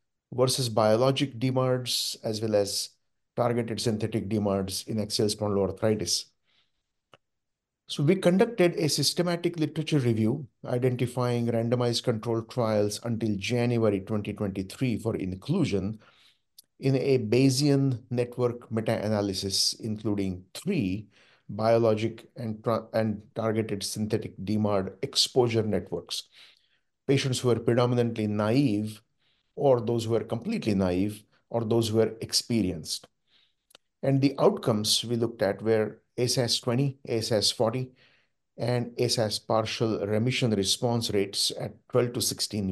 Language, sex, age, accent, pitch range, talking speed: English, male, 50-69, Indian, 105-125 Hz, 115 wpm